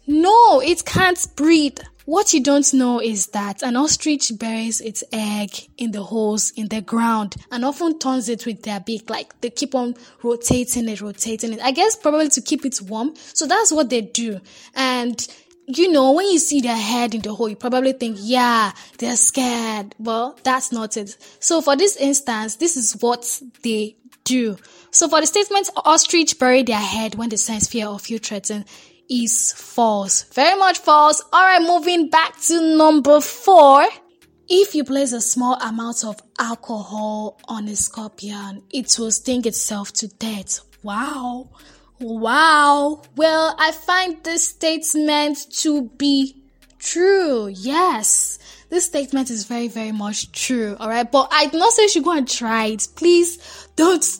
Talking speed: 170 wpm